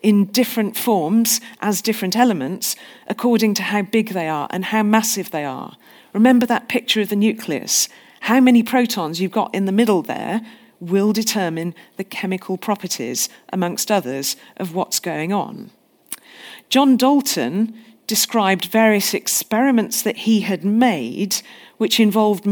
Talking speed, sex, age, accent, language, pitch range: 145 wpm, female, 40-59, British, English, 195-235 Hz